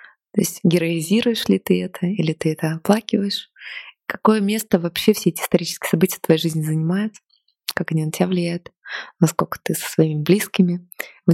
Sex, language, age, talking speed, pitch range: female, Russian, 20-39, 170 wpm, 165-195 Hz